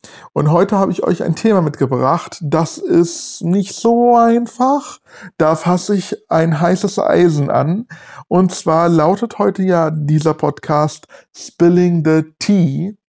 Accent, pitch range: German, 150-185 Hz